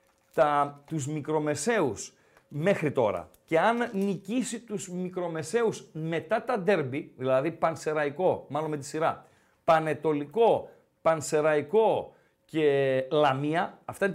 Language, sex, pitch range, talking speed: Greek, male, 160-235 Hz, 105 wpm